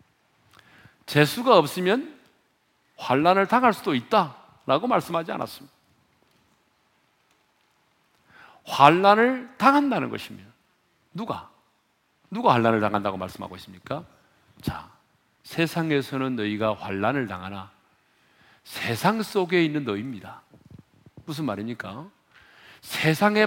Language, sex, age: Korean, male, 40-59